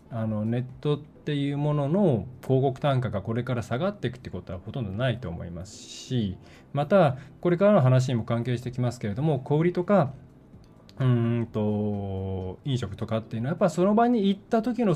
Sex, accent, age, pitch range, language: male, native, 20-39, 105-145 Hz, Japanese